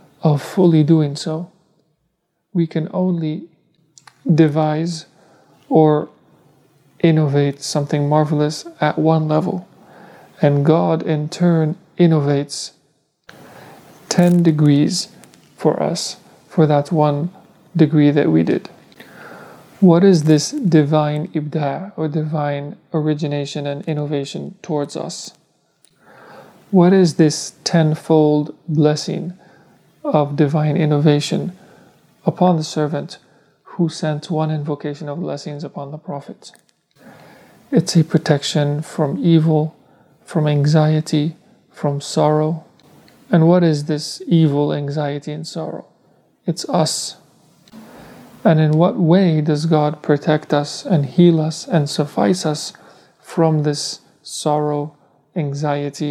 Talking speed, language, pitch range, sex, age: 105 wpm, English, 150-170 Hz, male, 40-59